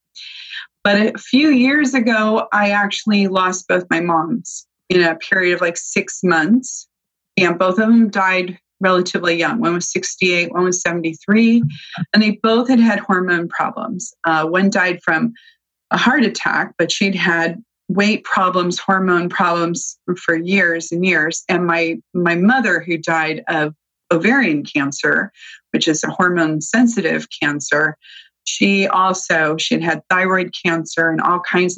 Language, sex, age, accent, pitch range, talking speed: English, female, 30-49, American, 165-200 Hz, 150 wpm